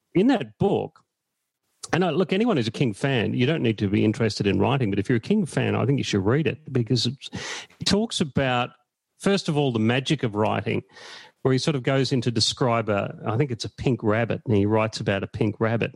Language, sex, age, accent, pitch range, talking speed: English, male, 40-59, Australian, 110-140 Hz, 240 wpm